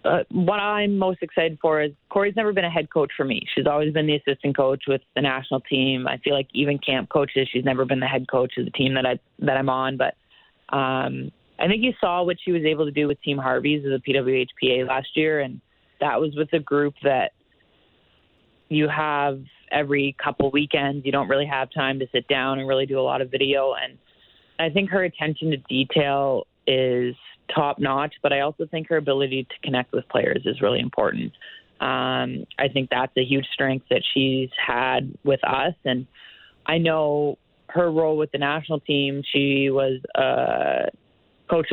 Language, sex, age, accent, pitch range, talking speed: English, female, 20-39, American, 135-155 Hz, 205 wpm